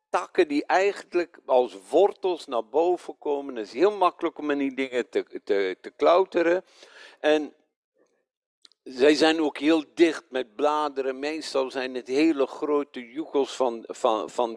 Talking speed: 145 wpm